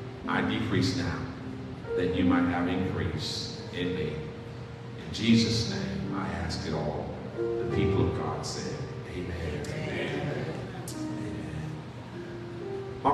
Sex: male